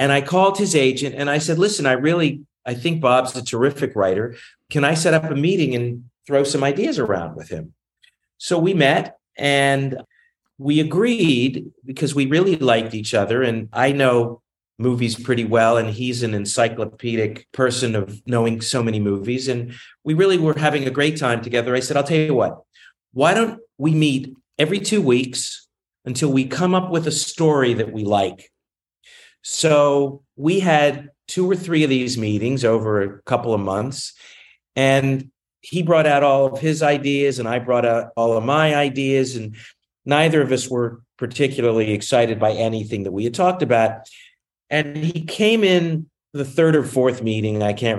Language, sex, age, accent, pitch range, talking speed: English, male, 40-59, American, 115-150 Hz, 180 wpm